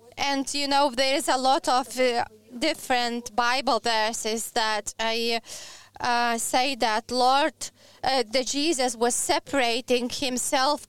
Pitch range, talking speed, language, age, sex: 240-280 Hz, 130 wpm, English, 20-39, female